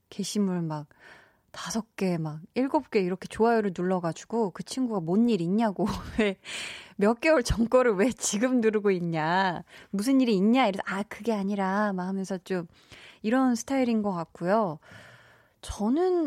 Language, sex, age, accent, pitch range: Korean, female, 20-39, native, 185-245 Hz